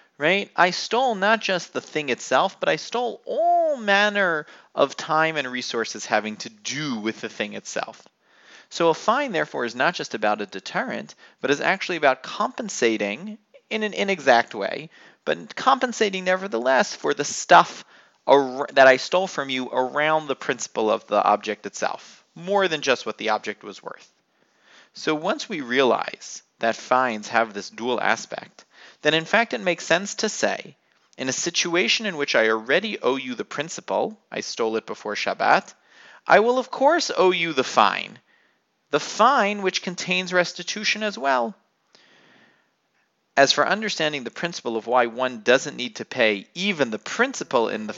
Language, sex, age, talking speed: English, male, 30-49, 170 wpm